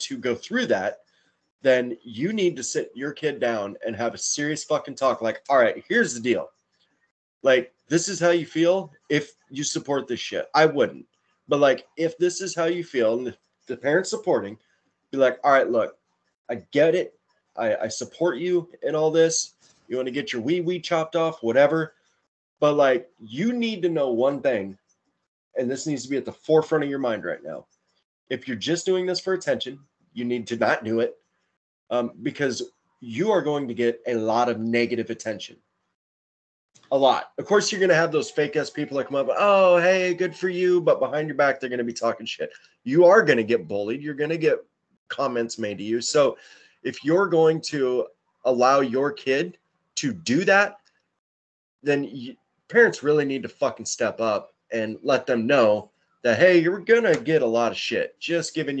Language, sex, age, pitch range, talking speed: English, male, 20-39, 125-175 Hz, 205 wpm